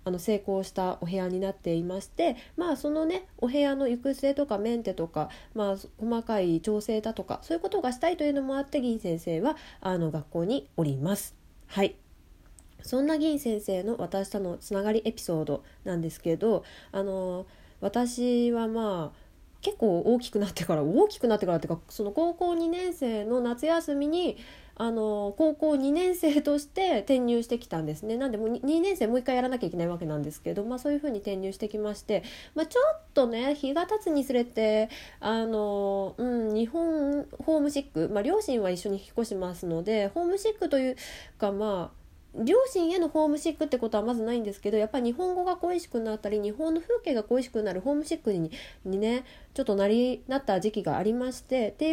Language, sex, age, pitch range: Japanese, female, 20-39, 195-290 Hz